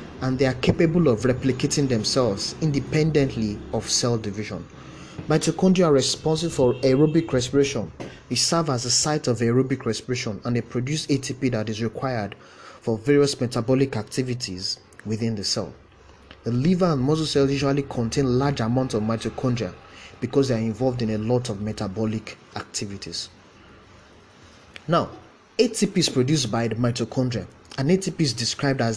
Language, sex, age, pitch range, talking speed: English, male, 30-49, 115-145 Hz, 150 wpm